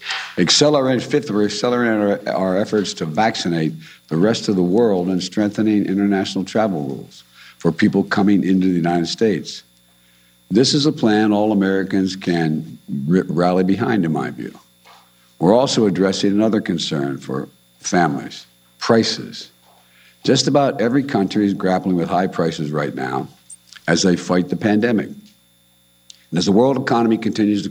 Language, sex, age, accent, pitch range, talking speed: English, male, 60-79, American, 75-105 Hz, 150 wpm